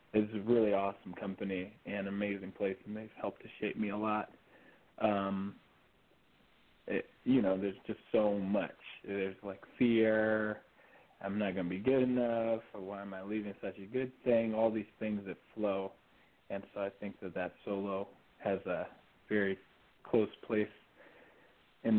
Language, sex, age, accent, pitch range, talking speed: English, male, 20-39, American, 100-110 Hz, 165 wpm